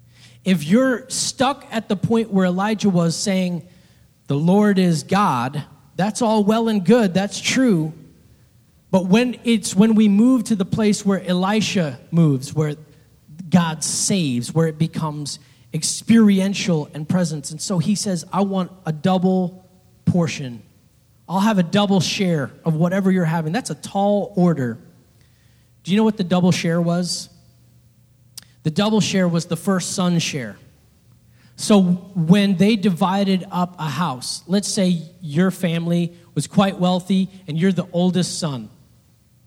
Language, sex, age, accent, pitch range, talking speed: English, male, 30-49, American, 150-195 Hz, 150 wpm